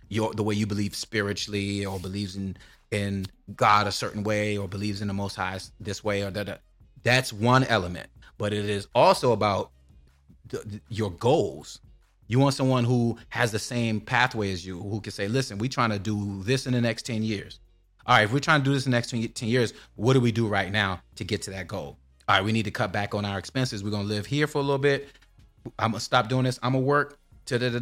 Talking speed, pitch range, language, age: 250 wpm, 105-135 Hz, English, 30-49